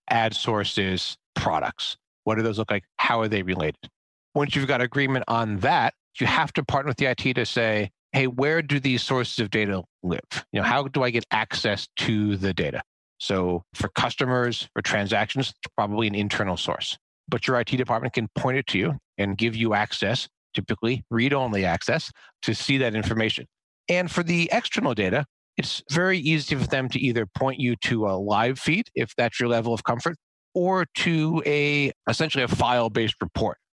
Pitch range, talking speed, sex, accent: 100-130 Hz, 190 wpm, male, American